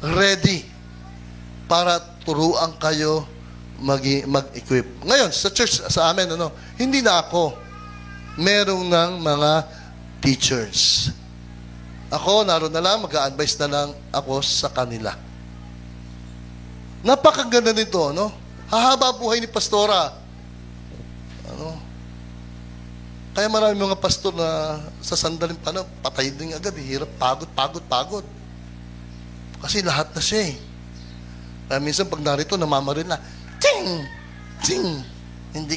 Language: Filipino